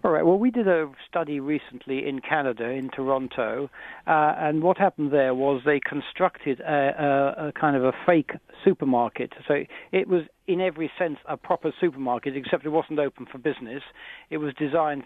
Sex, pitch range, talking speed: male, 135-155 Hz, 185 wpm